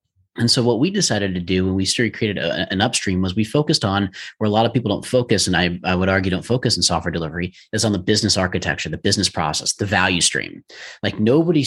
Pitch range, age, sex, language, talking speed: 90-115 Hz, 30-49, male, English, 240 wpm